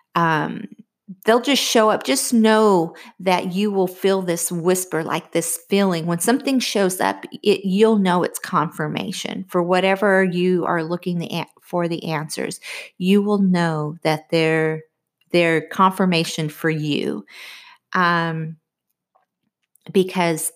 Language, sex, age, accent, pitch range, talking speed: English, female, 40-59, American, 165-200 Hz, 125 wpm